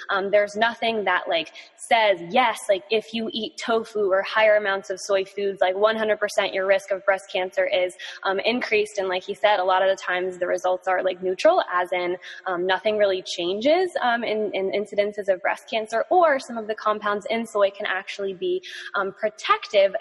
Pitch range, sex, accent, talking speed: 185-230 Hz, female, American, 200 wpm